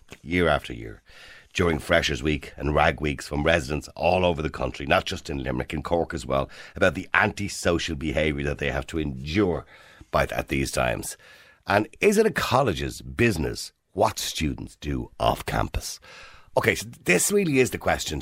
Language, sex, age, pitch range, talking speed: English, male, 50-69, 80-130 Hz, 175 wpm